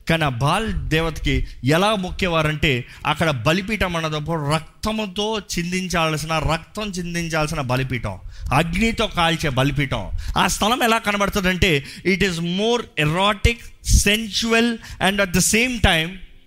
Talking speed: 115 wpm